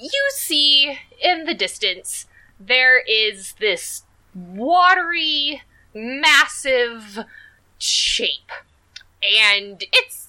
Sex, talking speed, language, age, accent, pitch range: female, 75 wpm, English, 20-39, American, 190-315 Hz